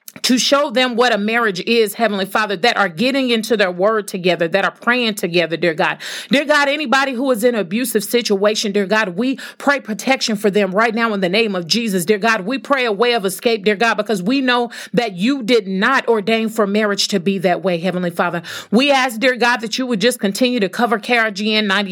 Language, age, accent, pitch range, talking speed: English, 40-59, American, 205-245 Hz, 225 wpm